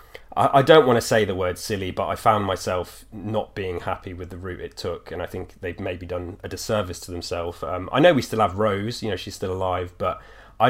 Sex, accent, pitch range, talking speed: male, British, 95-110 Hz, 245 wpm